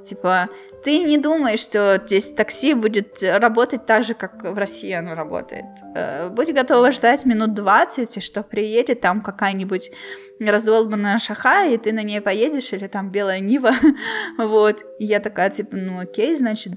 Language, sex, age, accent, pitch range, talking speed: Russian, female, 20-39, native, 185-230 Hz, 155 wpm